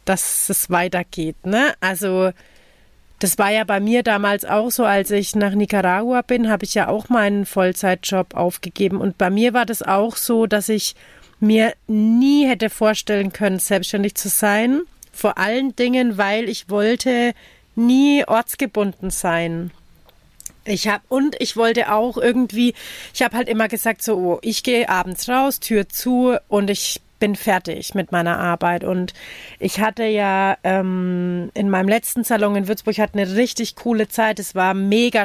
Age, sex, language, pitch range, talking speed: 40-59, female, German, 195-230 Hz, 160 wpm